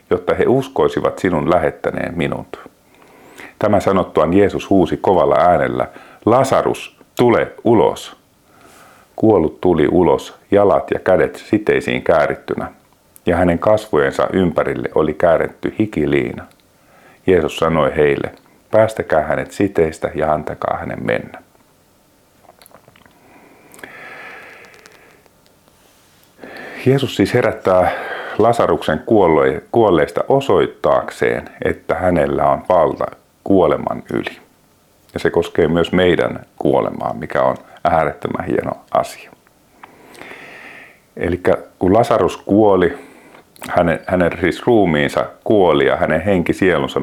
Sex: male